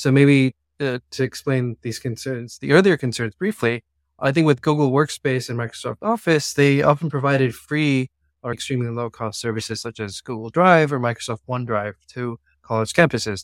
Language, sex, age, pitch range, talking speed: English, male, 20-39, 115-145 Hz, 160 wpm